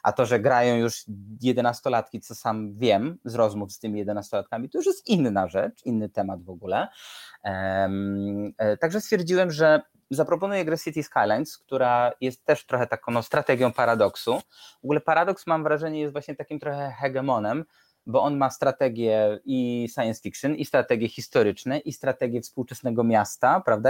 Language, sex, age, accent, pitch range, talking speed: Polish, male, 20-39, native, 120-150 Hz, 165 wpm